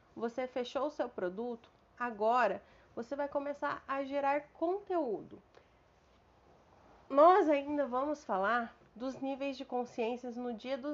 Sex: female